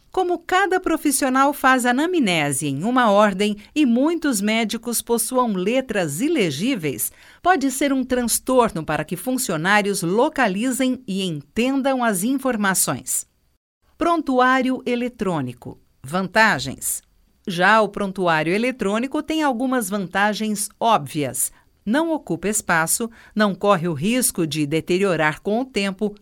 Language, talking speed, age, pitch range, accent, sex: Portuguese, 110 wpm, 50-69, 195-270 Hz, Brazilian, female